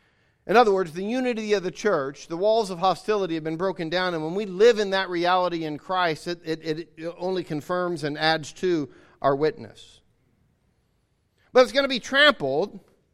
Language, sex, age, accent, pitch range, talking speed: English, male, 40-59, American, 135-200 Hz, 185 wpm